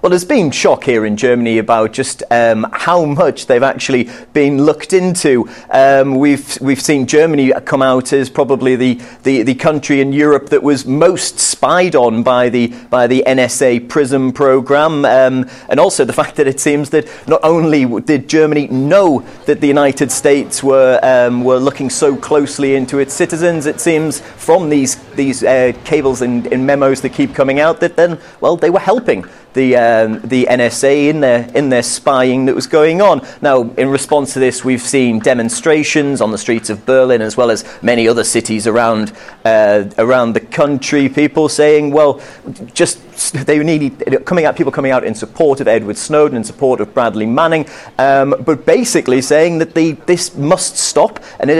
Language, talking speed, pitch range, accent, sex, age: English, 185 wpm, 130-155 Hz, British, male, 30-49